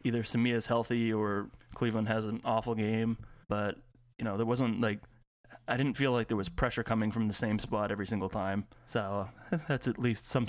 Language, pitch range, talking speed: English, 105-125 Hz, 200 wpm